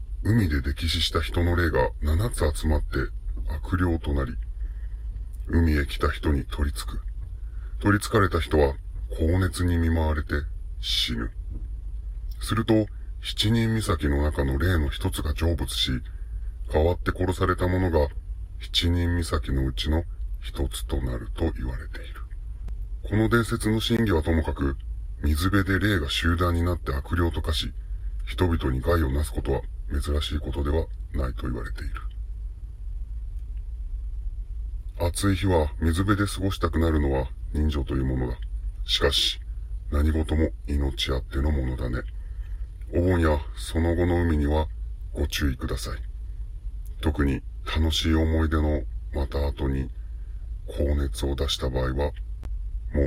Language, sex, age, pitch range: Japanese, female, 40-59, 70-85 Hz